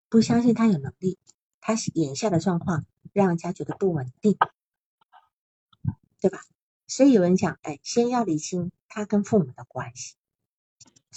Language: Chinese